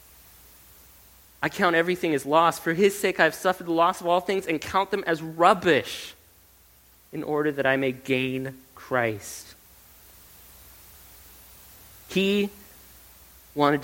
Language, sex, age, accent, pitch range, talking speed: English, male, 30-49, American, 95-155 Hz, 130 wpm